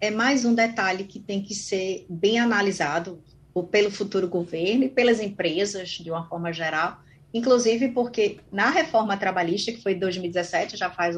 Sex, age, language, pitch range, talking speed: female, 30-49, Portuguese, 195-245 Hz, 160 wpm